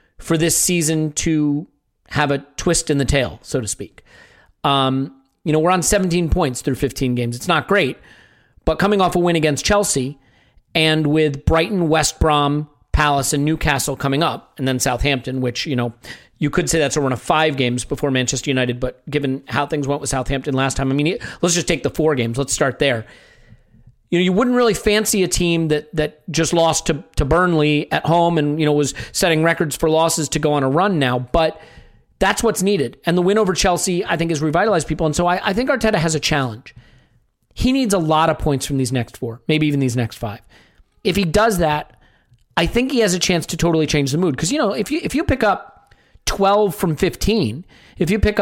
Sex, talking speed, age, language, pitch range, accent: male, 225 wpm, 40-59, English, 140-175 Hz, American